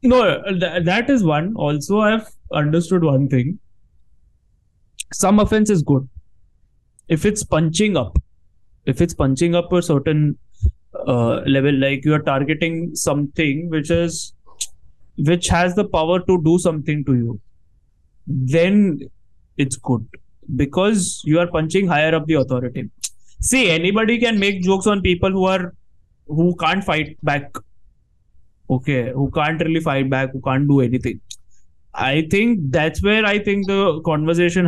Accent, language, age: Indian, English, 20-39